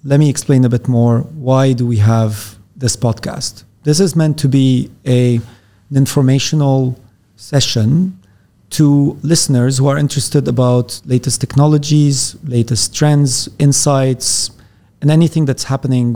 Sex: male